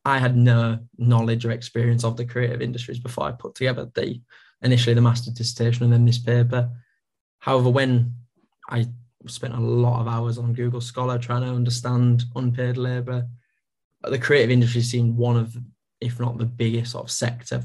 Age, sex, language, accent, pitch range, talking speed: 20-39, male, English, British, 120-125 Hz, 175 wpm